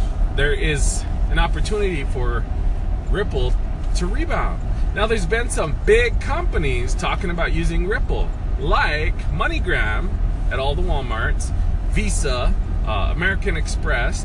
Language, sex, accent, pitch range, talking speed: English, male, American, 85-90 Hz, 120 wpm